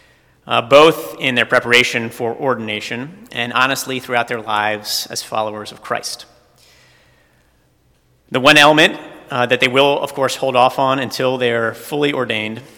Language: English